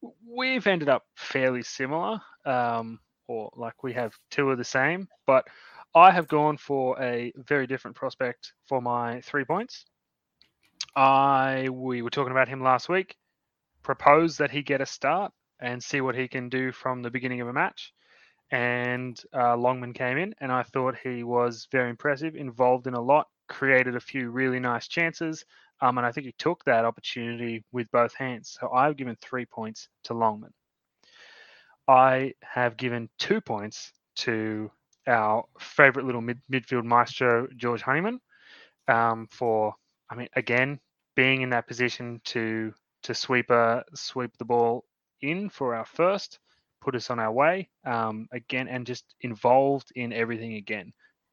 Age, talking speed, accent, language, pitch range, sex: 20-39, 165 wpm, Australian, English, 120-135 Hz, male